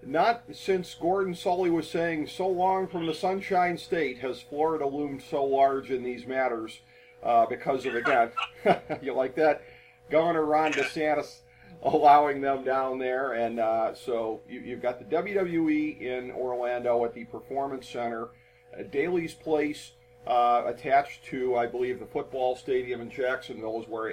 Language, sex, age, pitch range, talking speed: English, male, 40-59, 120-145 Hz, 150 wpm